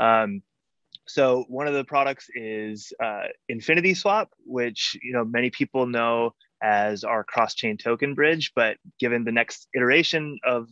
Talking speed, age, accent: 150 wpm, 20-39, American